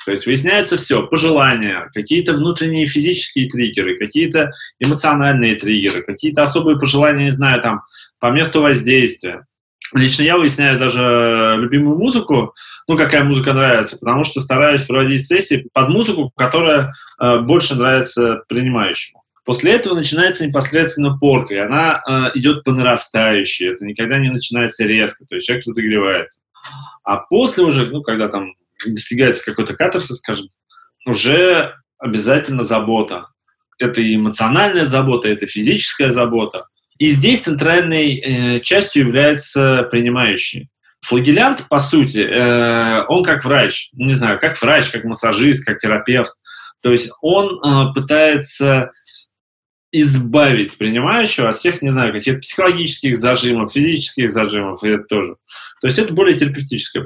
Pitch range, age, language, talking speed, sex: 115-150 Hz, 20-39, Russian, 135 wpm, male